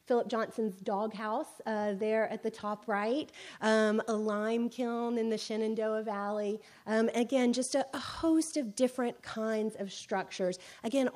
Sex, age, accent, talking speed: female, 30-49, American, 155 wpm